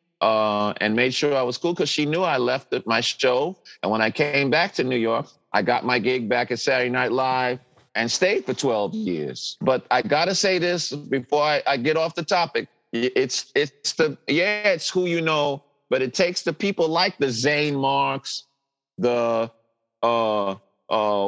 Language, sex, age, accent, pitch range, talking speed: English, male, 50-69, American, 125-160 Hz, 190 wpm